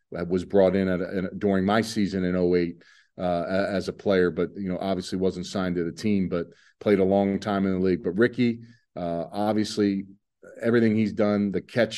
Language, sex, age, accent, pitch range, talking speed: English, male, 40-59, American, 90-105 Hz, 190 wpm